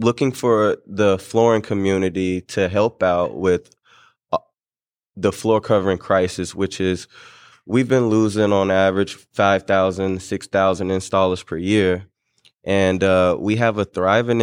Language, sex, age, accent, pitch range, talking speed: English, male, 20-39, American, 95-105 Hz, 130 wpm